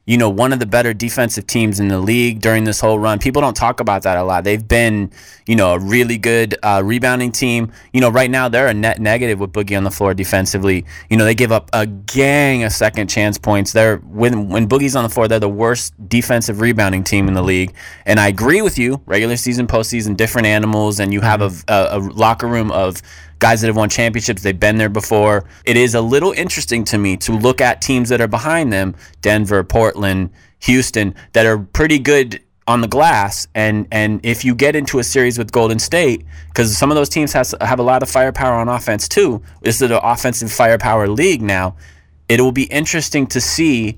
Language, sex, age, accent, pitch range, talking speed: English, male, 20-39, American, 100-125 Hz, 225 wpm